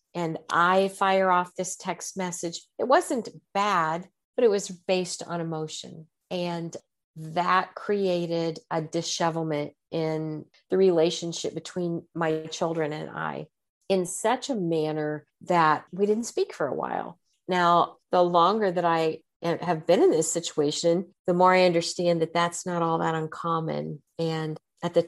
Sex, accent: female, American